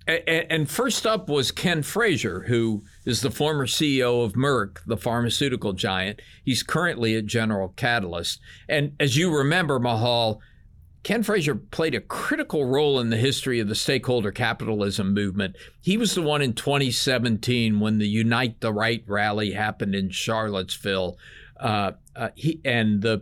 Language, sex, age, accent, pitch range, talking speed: English, male, 50-69, American, 100-135 Hz, 155 wpm